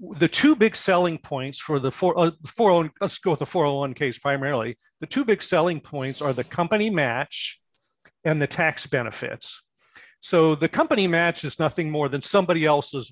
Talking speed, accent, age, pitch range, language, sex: 190 wpm, American, 50-69, 145-190 Hz, English, male